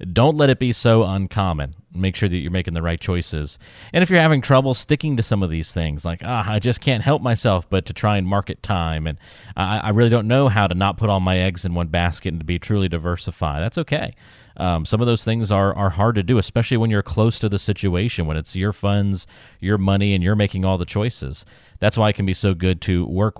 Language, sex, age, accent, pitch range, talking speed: English, male, 30-49, American, 95-115 Hz, 255 wpm